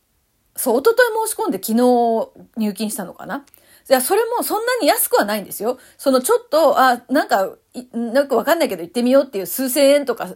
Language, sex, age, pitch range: Japanese, female, 40-59, 220-315 Hz